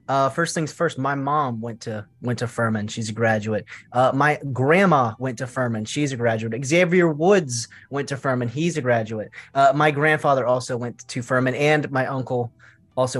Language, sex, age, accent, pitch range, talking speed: English, male, 20-39, American, 120-150 Hz, 190 wpm